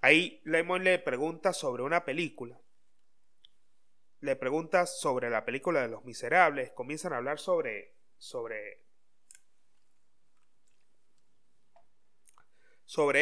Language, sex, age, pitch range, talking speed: Spanish, male, 30-49, 150-235 Hz, 95 wpm